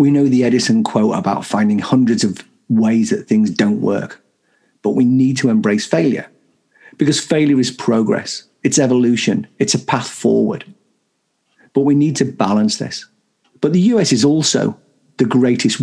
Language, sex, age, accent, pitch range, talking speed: English, male, 50-69, British, 115-190 Hz, 165 wpm